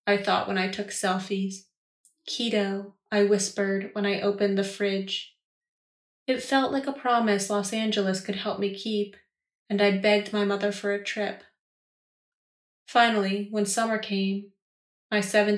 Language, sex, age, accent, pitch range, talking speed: English, female, 30-49, American, 200-225 Hz, 145 wpm